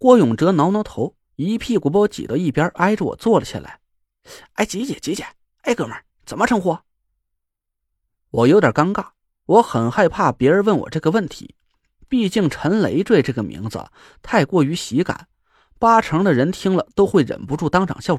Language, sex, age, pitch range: Chinese, male, 30-49, 155-245 Hz